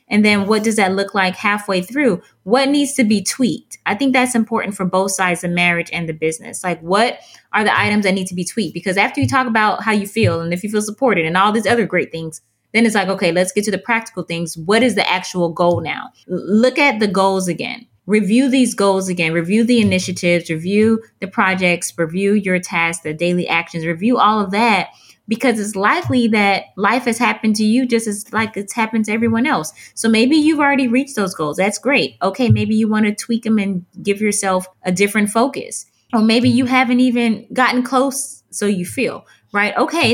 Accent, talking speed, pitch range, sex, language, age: American, 220 wpm, 185-235 Hz, female, English, 20-39